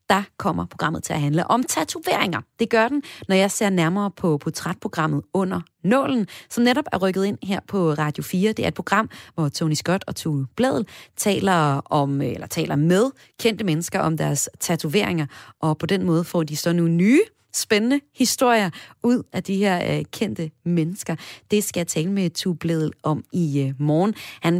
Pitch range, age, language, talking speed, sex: 150-210 Hz, 30-49, Danish, 185 wpm, female